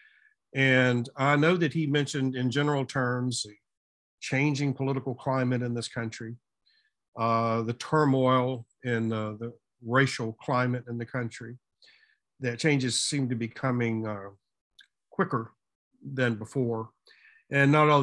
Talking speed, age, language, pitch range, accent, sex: 135 wpm, 50-69, English, 120-145 Hz, American, male